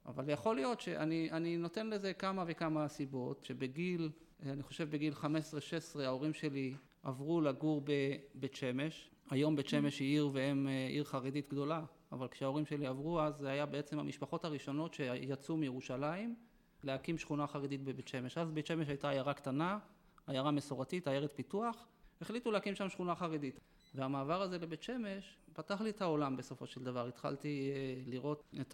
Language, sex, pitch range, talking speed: Hebrew, male, 140-170 Hz, 155 wpm